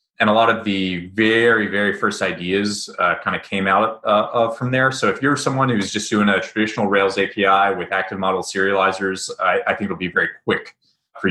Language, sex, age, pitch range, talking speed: English, male, 30-49, 95-135 Hz, 220 wpm